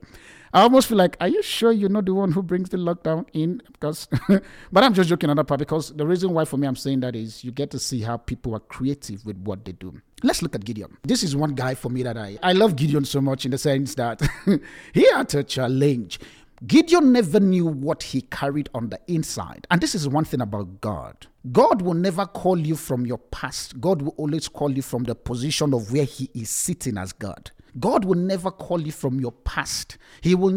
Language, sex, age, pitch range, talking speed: English, male, 50-69, 130-190 Hz, 235 wpm